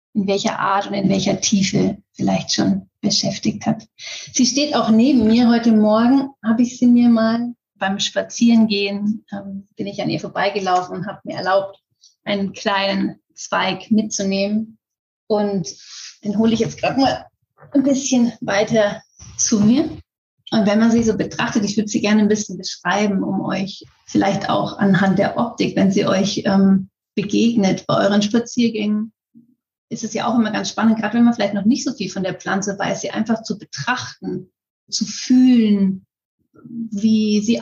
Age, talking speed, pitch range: 30-49, 170 wpm, 195-230 Hz